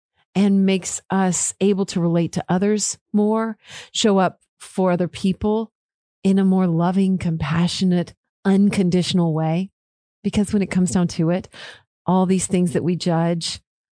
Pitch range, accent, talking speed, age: 170-210 Hz, American, 145 wpm, 40-59